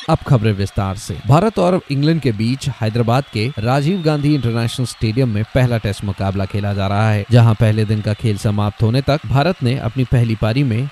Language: Hindi